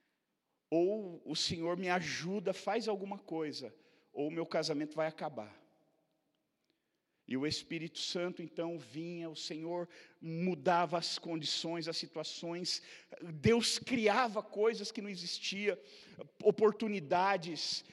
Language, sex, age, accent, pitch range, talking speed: Portuguese, male, 50-69, Brazilian, 165-240 Hz, 115 wpm